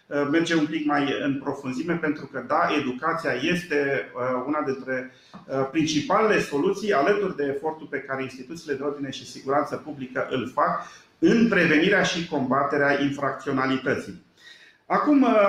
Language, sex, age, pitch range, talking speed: Romanian, male, 40-59, 140-175 Hz, 130 wpm